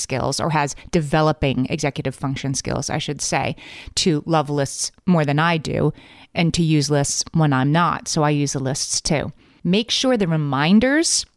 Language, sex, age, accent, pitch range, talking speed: English, female, 30-49, American, 150-185 Hz, 180 wpm